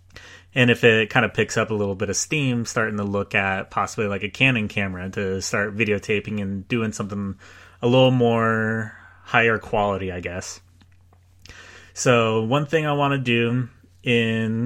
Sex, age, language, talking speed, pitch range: male, 30-49, English, 170 wpm, 100-120 Hz